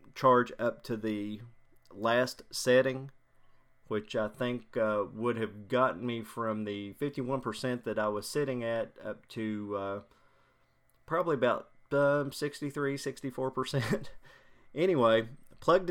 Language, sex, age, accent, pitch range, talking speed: English, male, 30-49, American, 110-130 Hz, 130 wpm